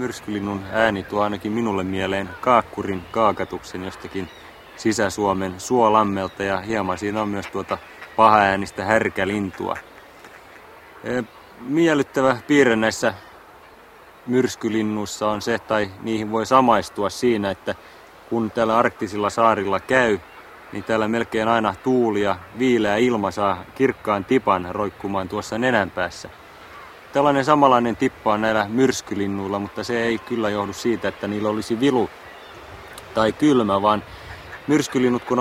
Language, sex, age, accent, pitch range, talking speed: Finnish, male, 30-49, native, 100-120 Hz, 120 wpm